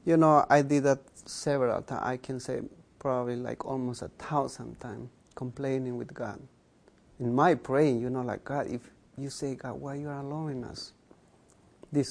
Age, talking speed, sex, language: 30-49, 180 wpm, male, English